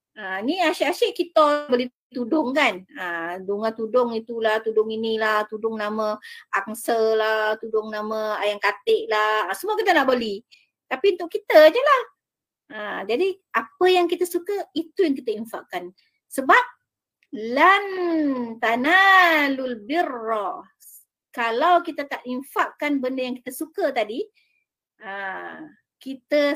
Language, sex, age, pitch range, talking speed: Malay, female, 30-49, 220-340 Hz, 120 wpm